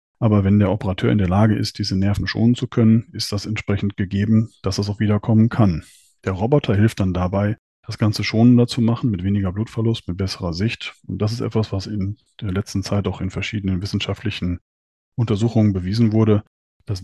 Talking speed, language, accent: 195 wpm, German, German